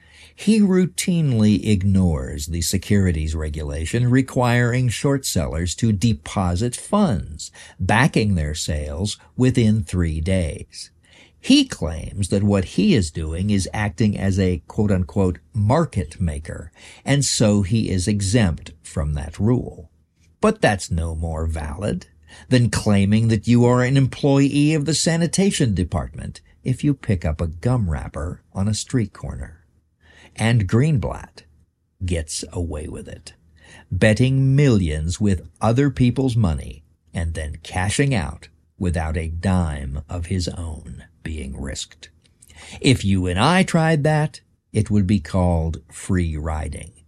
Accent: American